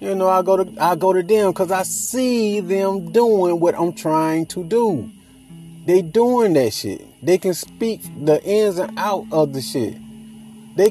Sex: male